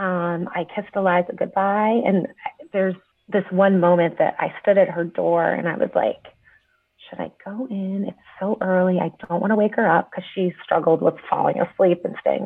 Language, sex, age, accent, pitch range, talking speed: English, female, 30-49, American, 170-195 Hz, 200 wpm